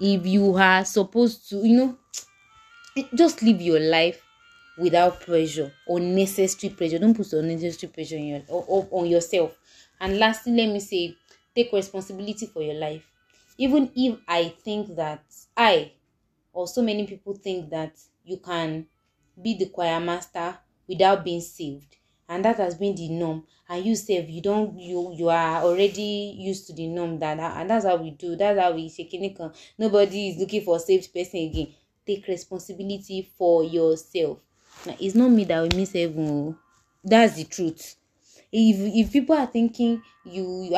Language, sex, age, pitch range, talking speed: English, female, 20-39, 170-210 Hz, 170 wpm